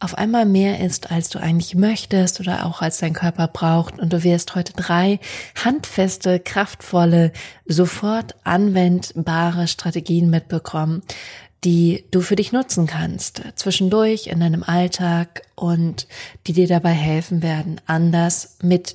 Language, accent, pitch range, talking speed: German, German, 165-190 Hz, 135 wpm